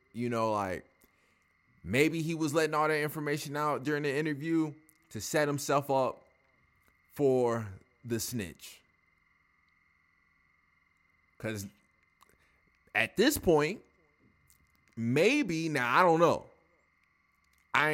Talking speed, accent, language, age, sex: 105 wpm, American, English, 20-39, male